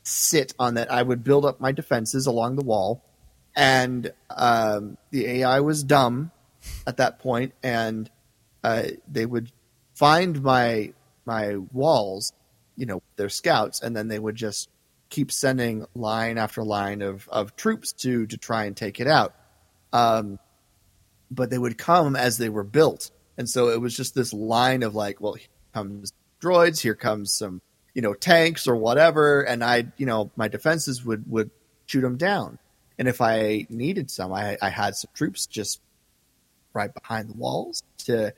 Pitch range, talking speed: 115-140 Hz, 175 wpm